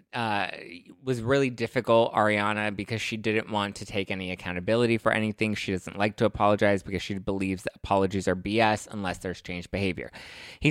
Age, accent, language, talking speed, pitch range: 20-39, American, English, 180 wpm, 95-115 Hz